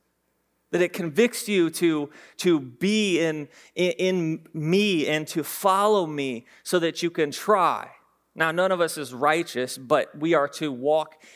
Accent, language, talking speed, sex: American, English, 165 wpm, male